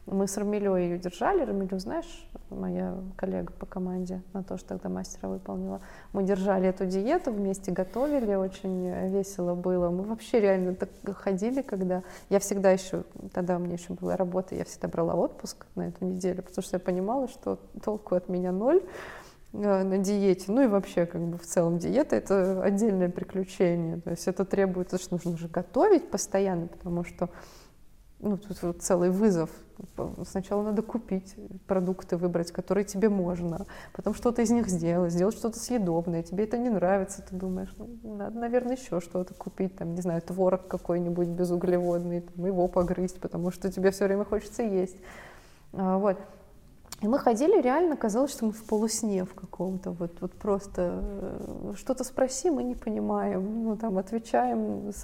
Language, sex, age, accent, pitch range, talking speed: Russian, female, 20-39, native, 180-215 Hz, 170 wpm